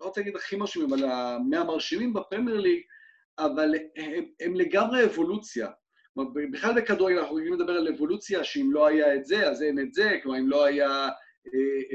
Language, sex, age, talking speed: Hebrew, male, 30-49, 170 wpm